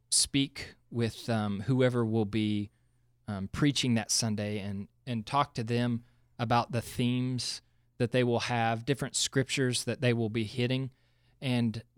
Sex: male